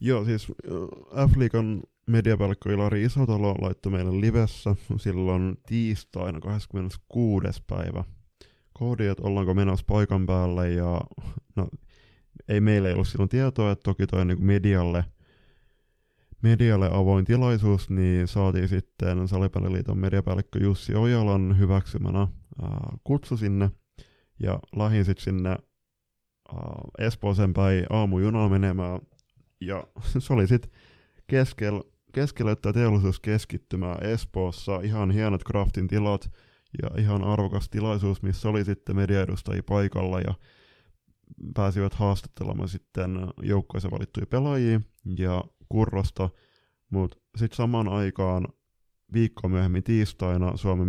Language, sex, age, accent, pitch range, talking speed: Finnish, male, 20-39, native, 95-110 Hz, 110 wpm